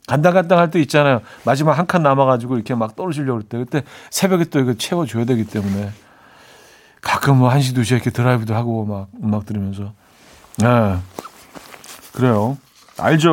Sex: male